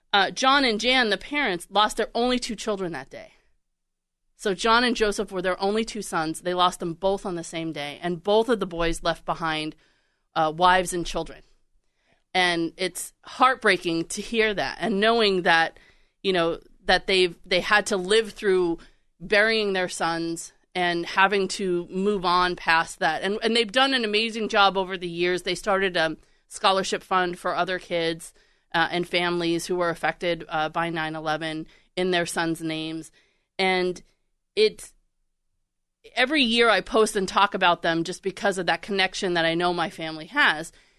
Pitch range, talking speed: 170-210 Hz, 175 wpm